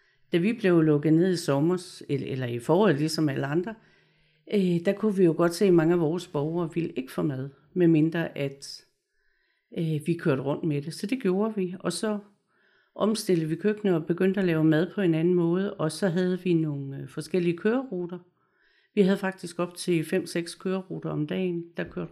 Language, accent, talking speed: Danish, native, 200 wpm